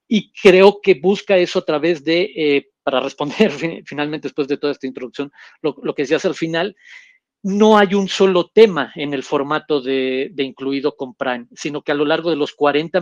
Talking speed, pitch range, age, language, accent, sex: 205 wpm, 145-175 Hz, 40-59, Spanish, Mexican, male